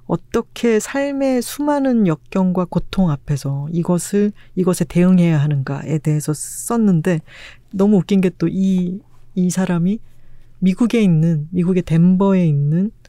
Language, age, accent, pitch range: Korean, 40-59, native, 150-195 Hz